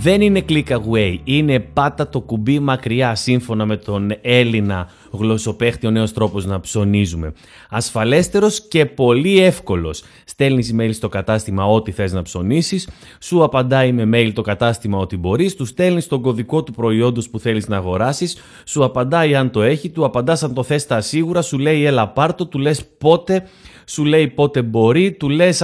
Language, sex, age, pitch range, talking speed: Greek, male, 30-49, 110-160 Hz, 175 wpm